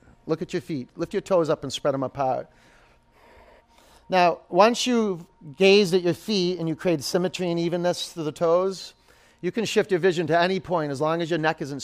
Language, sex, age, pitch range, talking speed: English, male, 30-49, 140-195 Hz, 215 wpm